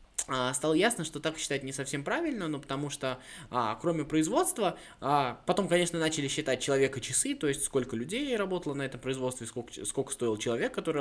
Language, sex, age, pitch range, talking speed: Russian, male, 20-39, 120-165 Hz, 175 wpm